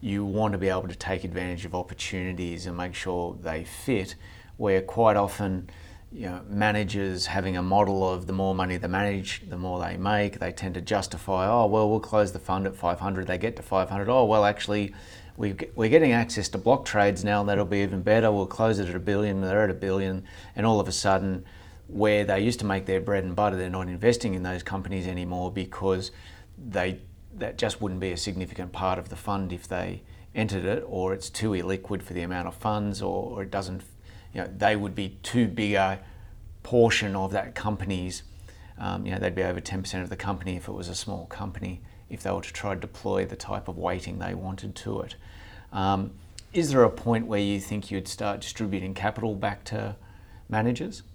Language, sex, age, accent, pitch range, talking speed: English, male, 30-49, Australian, 90-105 Hz, 210 wpm